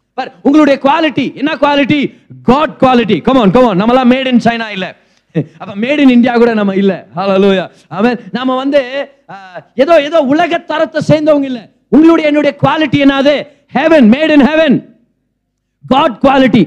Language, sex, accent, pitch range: Tamil, male, native, 195-285 Hz